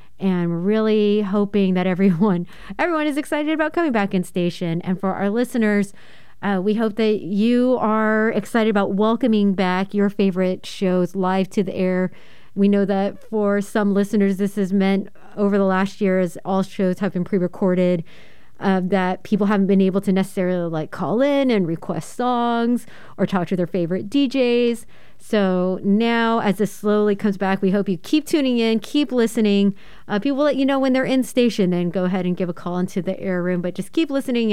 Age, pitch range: 30-49, 185-220 Hz